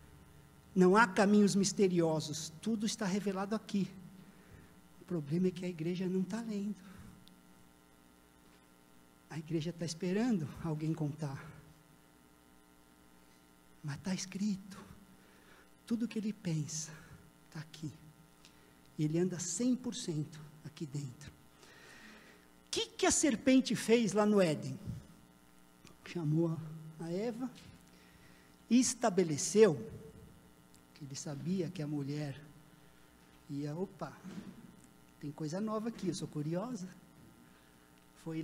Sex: male